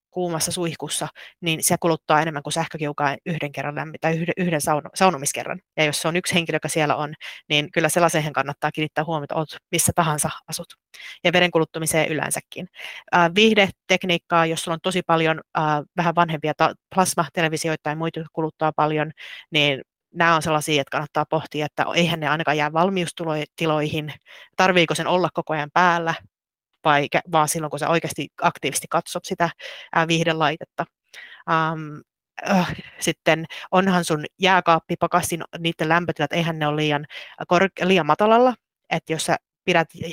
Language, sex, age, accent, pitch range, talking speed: Finnish, female, 30-49, native, 150-175 Hz, 145 wpm